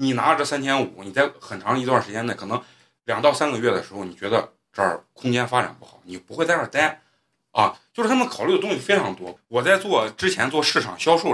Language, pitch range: Chinese, 100-155 Hz